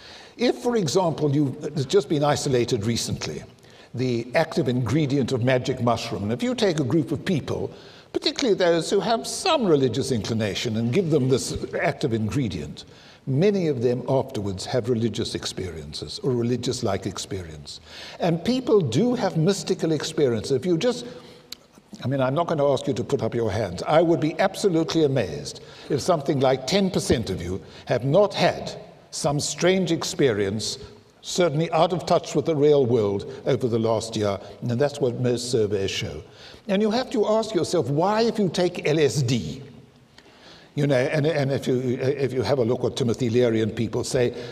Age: 60-79